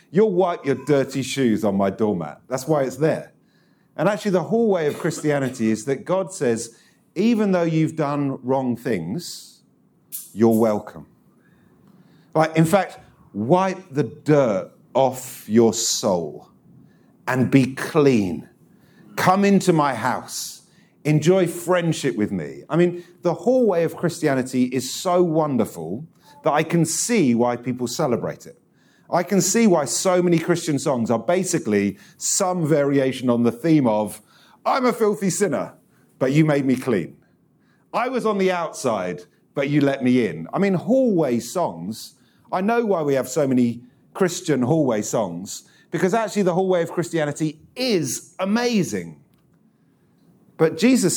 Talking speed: 150 wpm